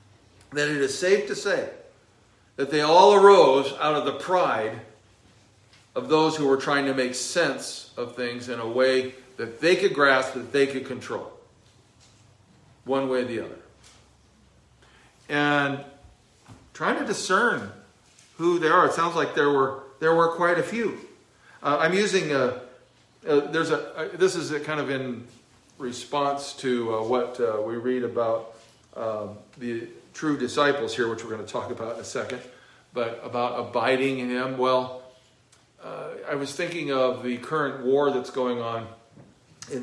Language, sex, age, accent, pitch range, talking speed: English, male, 40-59, American, 115-145 Hz, 165 wpm